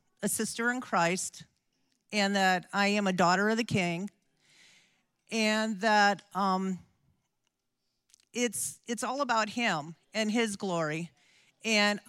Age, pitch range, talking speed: 50-69, 175-225 Hz, 125 wpm